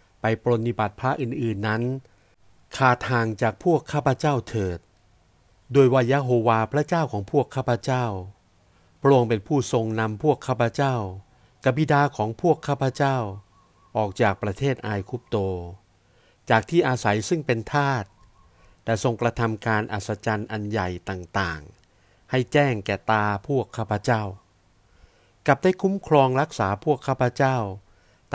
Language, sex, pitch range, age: Thai, male, 100-130 Hz, 60-79